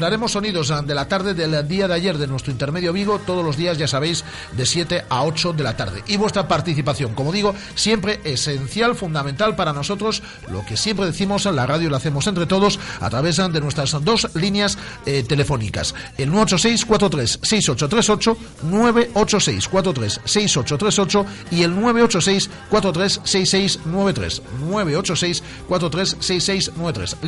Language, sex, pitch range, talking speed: Spanish, male, 130-190 Hz, 135 wpm